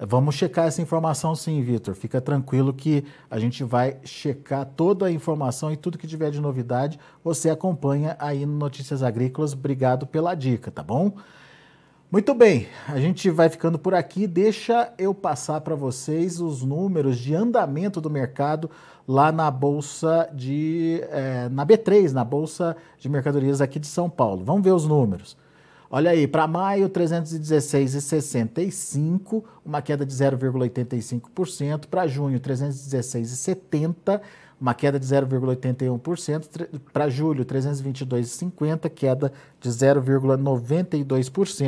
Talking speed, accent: 135 wpm, Brazilian